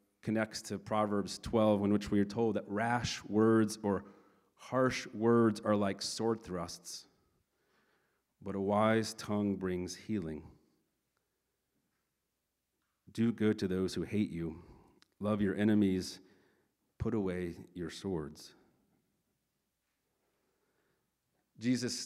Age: 40-59